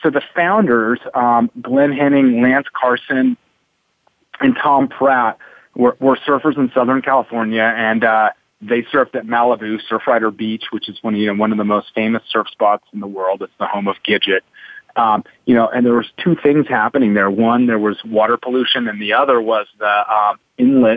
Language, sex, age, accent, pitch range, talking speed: English, male, 30-49, American, 110-130 Hz, 195 wpm